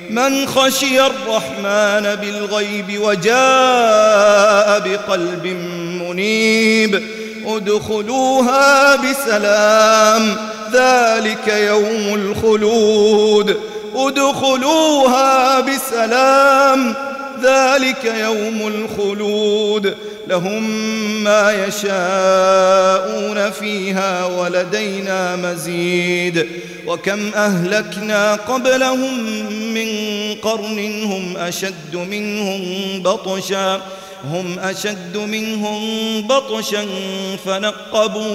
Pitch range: 195-225 Hz